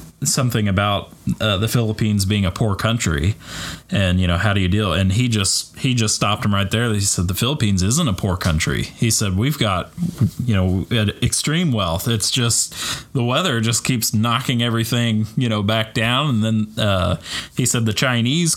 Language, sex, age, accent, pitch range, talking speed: English, male, 20-39, American, 100-130 Hz, 195 wpm